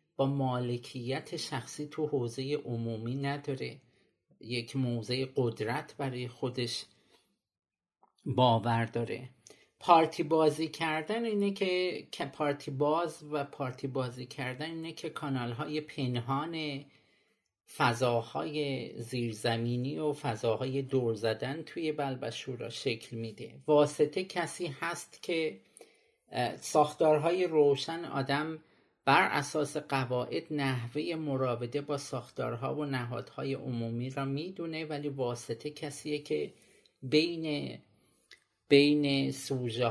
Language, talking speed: Persian, 100 wpm